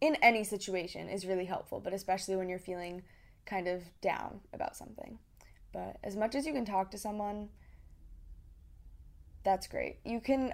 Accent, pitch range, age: American, 185-220 Hz, 10-29